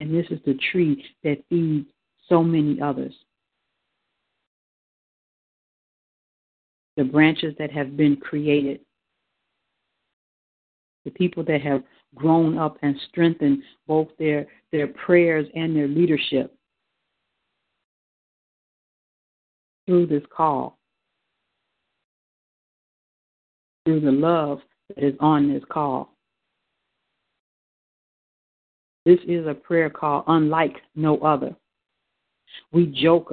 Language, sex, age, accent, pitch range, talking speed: English, female, 50-69, American, 145-170 Hz, 95 wpm